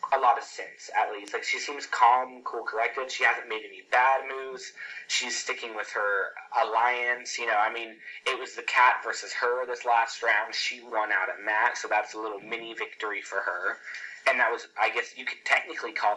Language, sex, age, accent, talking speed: English, male, 20-39, American, 215 wpm